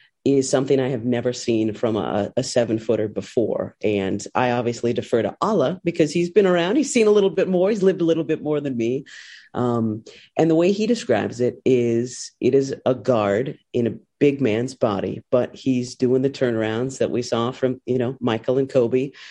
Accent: American